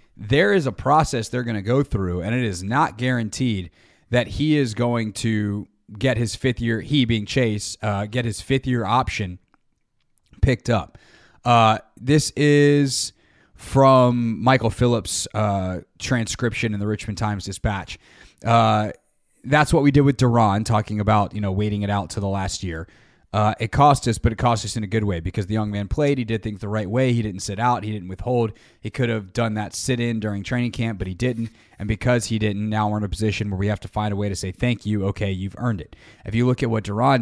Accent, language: American, English